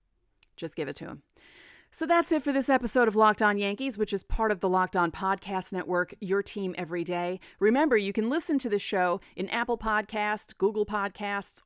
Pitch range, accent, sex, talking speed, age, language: 180-245 Hz, American, female, 205 wpm, 30-49, English